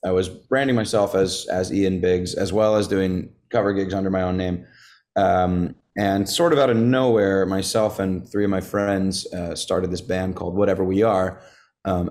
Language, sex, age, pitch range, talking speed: English, male, 30-49, 95-105 Hz, 200 wpm